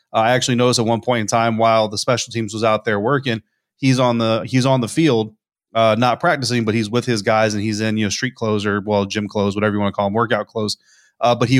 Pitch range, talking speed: 105-120 Hz, 275 wpm